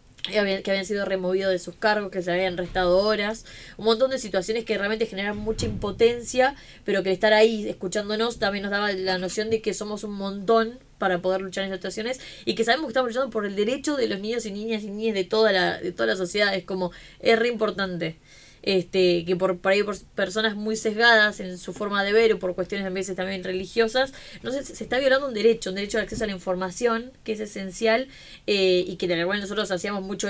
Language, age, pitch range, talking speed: Spanish, 20-39, 190-220 Hz, 230 wpm